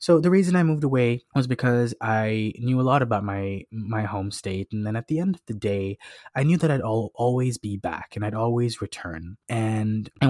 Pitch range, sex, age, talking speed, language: 105-125 Hz, male, 20-39, 225 wpm, English